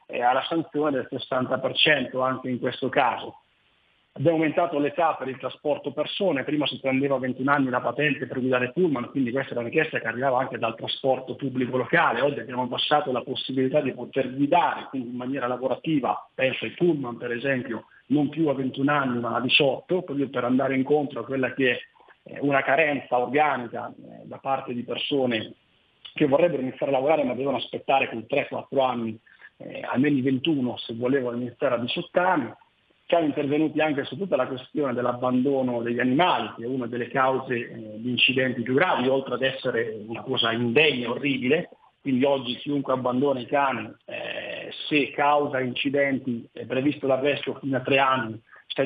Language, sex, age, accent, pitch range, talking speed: Italian, male, 40-59, native, 125-145 Hz, 180 wpm